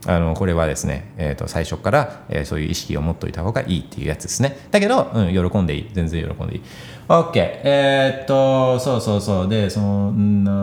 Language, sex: Japanese, male